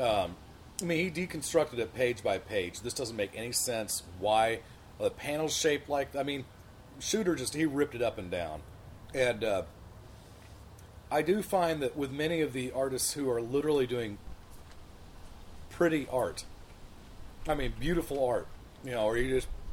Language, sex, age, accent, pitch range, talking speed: English, male, 40-59, American, 100-145 Hz, 175 wpm